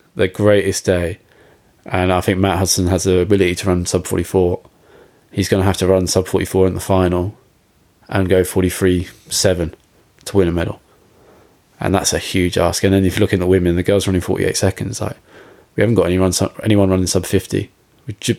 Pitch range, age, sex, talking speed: 95-105 Hz, 20-39, male, 200 wpm